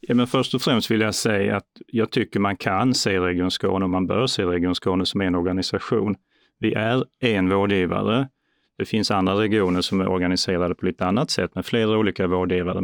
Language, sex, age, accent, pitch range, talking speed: Swedish, male, 30-49, native, 95-115 Hz, 205 wpm